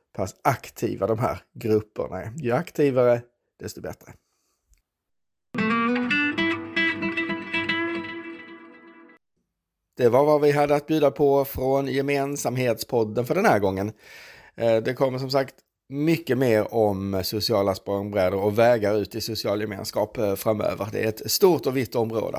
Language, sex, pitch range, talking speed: Swedish, male, 110-155 Hz, 125 wpm